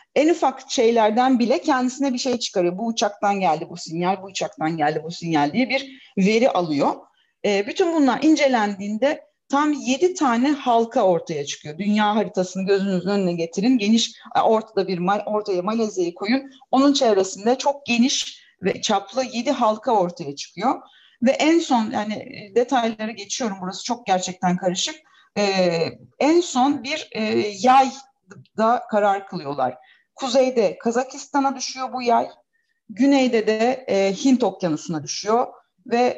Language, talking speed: Turkish, 140 wpm